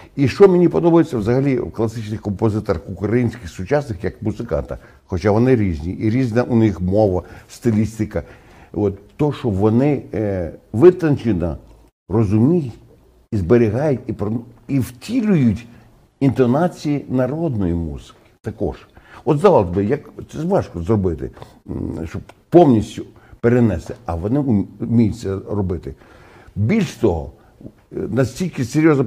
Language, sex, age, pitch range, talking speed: Ukrainian, male, 60-79, 105-140 Hz, 110 wpm